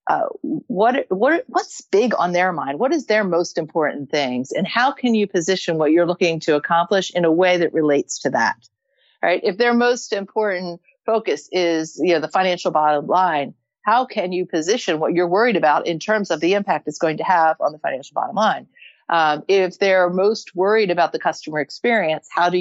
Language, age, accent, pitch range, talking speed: English, 50-69, American, 160-210 Hz, 205 wpm